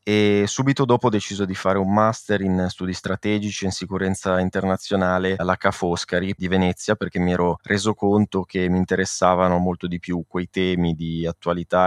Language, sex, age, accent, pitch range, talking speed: Italian, male, 20-39, native, 90-105 Hz, 175 wpm